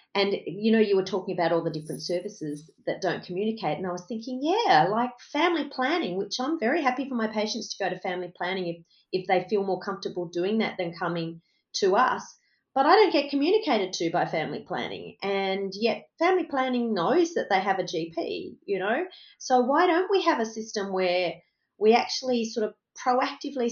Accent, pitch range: Australian, 175-255 Hz